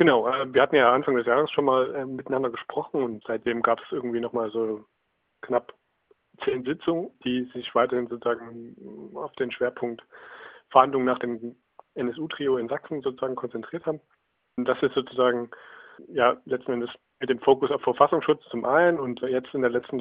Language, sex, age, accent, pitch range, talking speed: German, male, 40-59, German, 120-140 Hz, 170 wpm